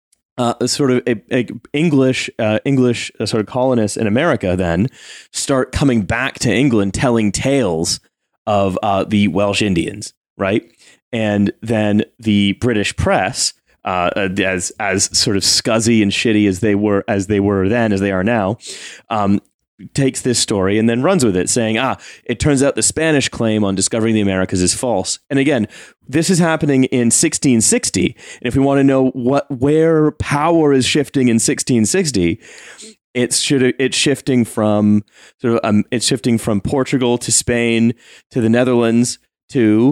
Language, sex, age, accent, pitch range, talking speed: English, male, 30-49, American, 105-135 Hz, 170 wpm